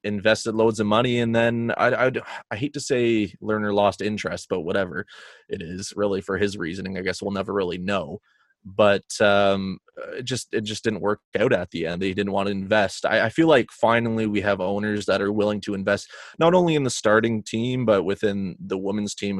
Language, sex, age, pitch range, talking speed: English, male, 20-39, 95-110 Hz, 215 wpm